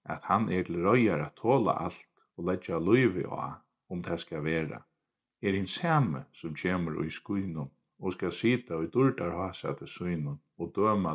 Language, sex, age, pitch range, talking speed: English, male, 50-69, 80-110 Hz, 165 wpm